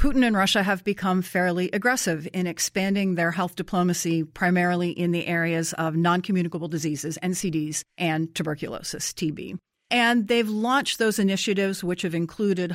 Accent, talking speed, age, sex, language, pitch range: American, 145 wpm, 40-59, female, English, 165-200 Hz